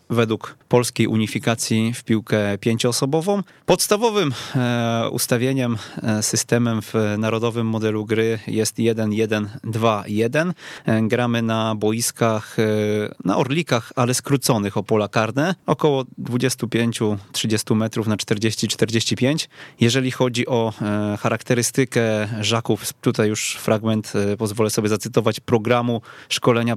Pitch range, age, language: 110-135 Hz, 20-39, Polish